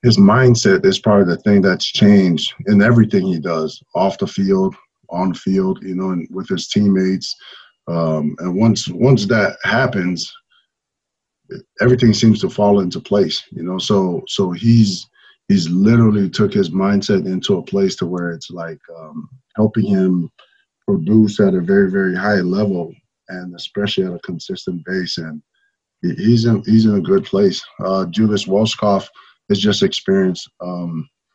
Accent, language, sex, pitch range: American, English, male, 90-130 Hz